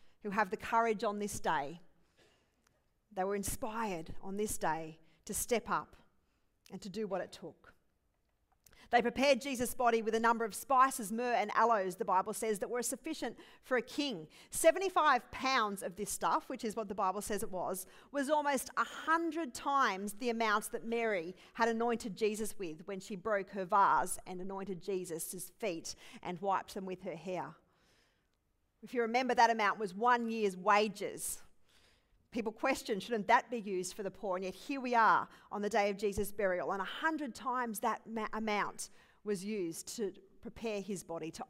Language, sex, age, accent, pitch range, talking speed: English, female, 40-59, Australian, 195-240 Hz, 180 wpm